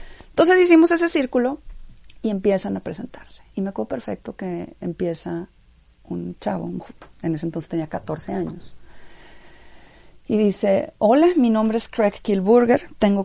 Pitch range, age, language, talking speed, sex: 160-205 Hz, 40-59, Spanish, 150 wpm, female